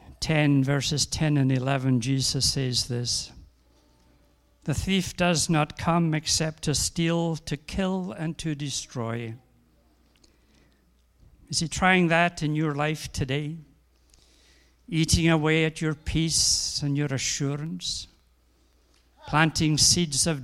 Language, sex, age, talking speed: English, male, 60-79, 115 wpm